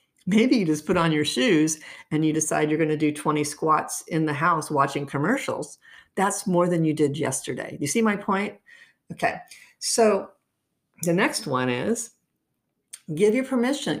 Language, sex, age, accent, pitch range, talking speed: English, female, 50-69, American, 150-220 Hz, 170 wpm